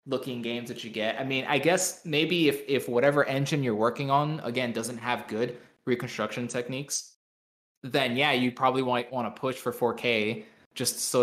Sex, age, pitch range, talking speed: male, 20-39, 115-145 Hz, 185 wpm